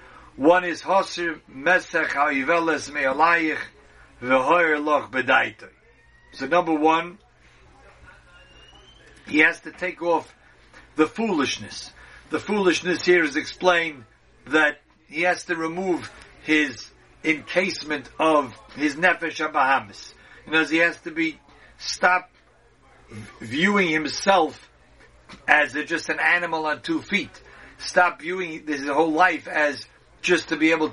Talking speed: 105 wpm